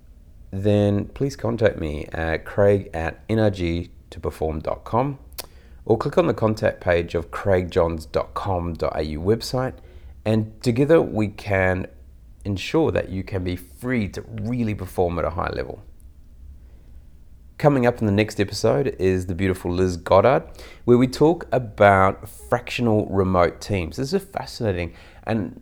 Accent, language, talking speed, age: Australian, English, 135 wpm, 30-49